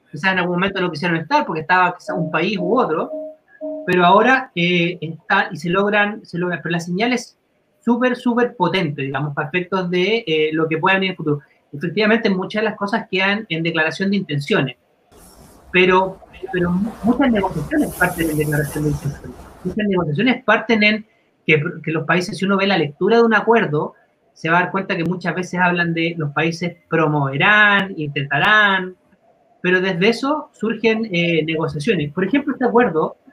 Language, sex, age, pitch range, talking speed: Spanish, male, 30-49, 160-215 Hz, 180 wpm